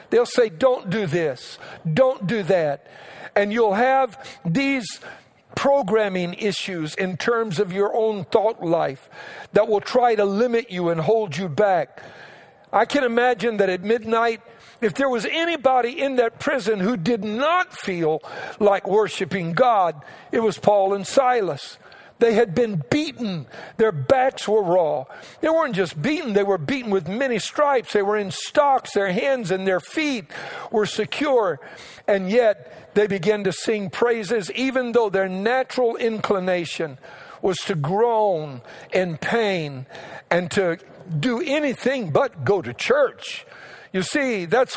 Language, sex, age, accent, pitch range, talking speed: English, male, 60-79, American, 190-245 Hz, 150 wpm